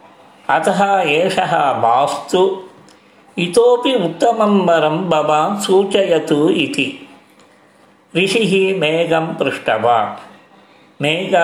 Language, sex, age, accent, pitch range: Tamil, male, 50-69, native, 155-190 Hz